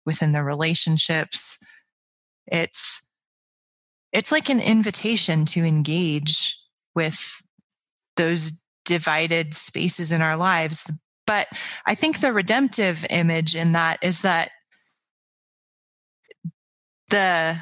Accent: American